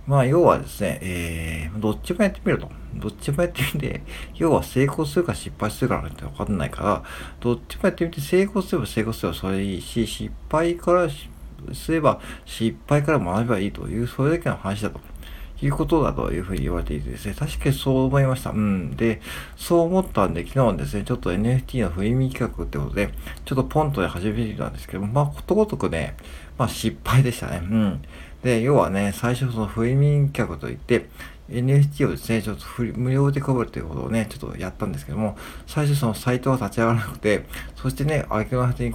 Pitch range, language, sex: 90-135 Hz, Japanese, male